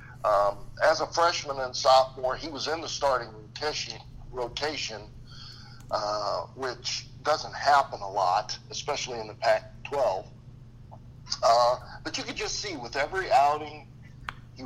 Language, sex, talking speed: English, male, 125 wpm